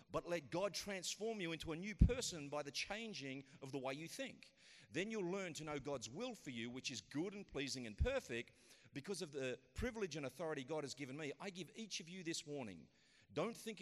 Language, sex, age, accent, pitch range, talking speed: English, male, 40-59, Australian, 130-185 Hz, 225 wpm